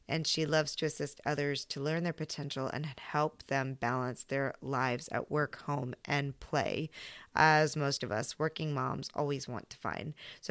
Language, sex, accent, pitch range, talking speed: English, female, American, 155-190 Hz, 185 wpm